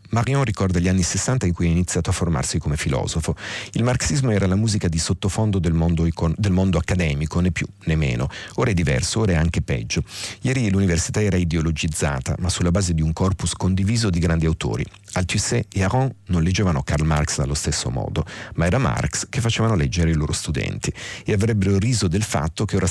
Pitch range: 85-105 Hz